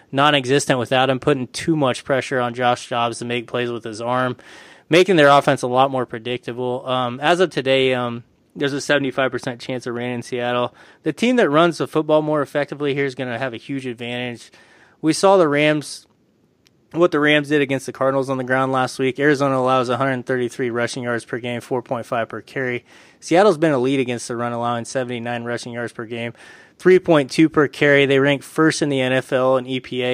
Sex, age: male, 20-39